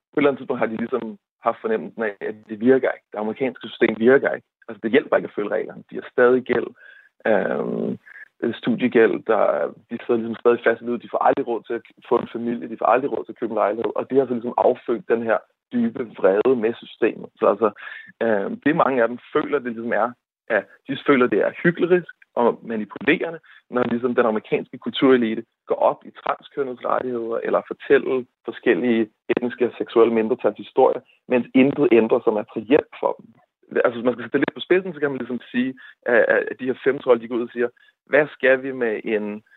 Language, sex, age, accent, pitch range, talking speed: Danish, male, 30-49, native, 115-145 Hz, 215 wpm